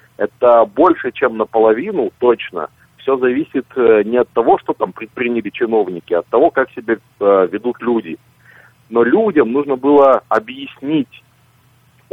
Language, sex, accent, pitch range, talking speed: Russian, male, native, 115-180 Hz, 125 wpm